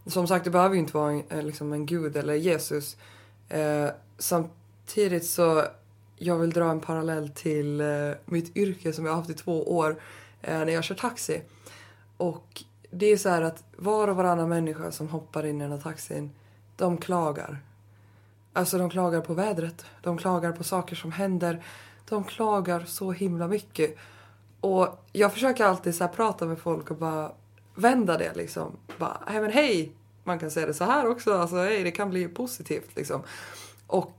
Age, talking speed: 20-39, 180 wpm